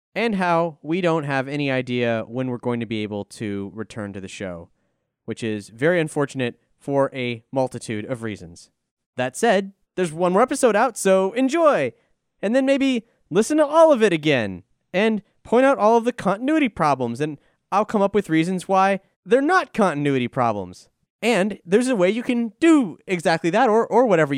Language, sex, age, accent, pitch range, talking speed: English, male, 20-39, American, 130-195 Hz, 185 wpm